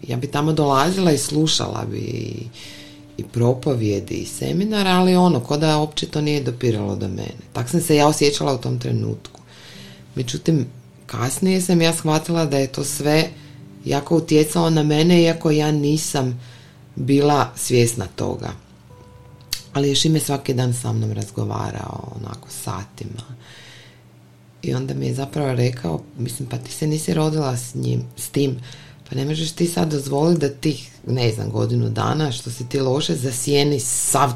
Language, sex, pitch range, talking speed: Croatian, female, 115-150 Hz, 160 wpm